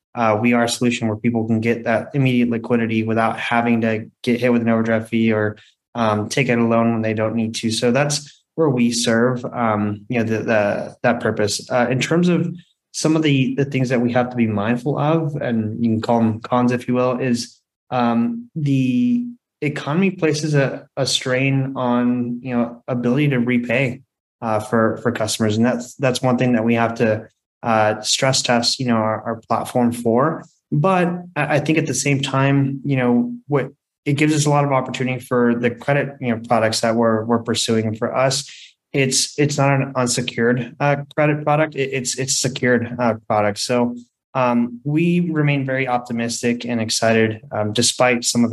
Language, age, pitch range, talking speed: English, 20-39, 115-135 Hz, 200 wpm